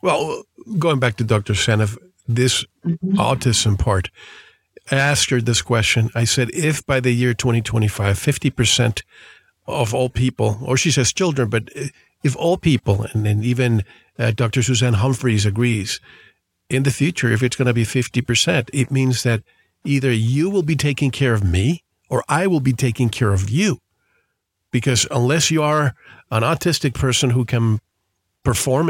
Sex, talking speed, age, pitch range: male, 165 wpm, 50-69, 115-140 Hz